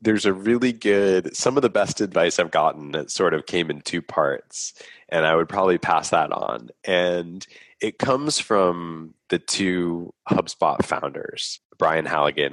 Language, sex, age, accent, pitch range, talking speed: English, male, 20-39, American, 80-110 Hz, 170 wpm